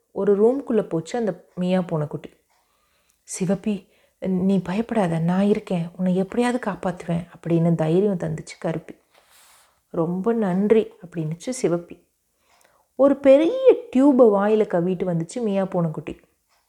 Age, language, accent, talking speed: 30-49, Tamil, native, 110 wpm